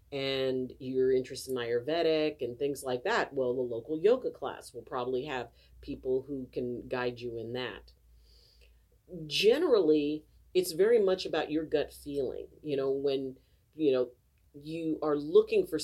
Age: 40-59